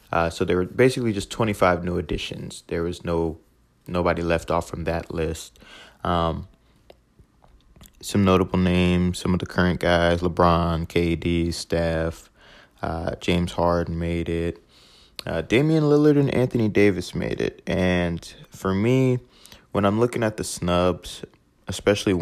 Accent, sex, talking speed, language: American, male, 140 wpm, English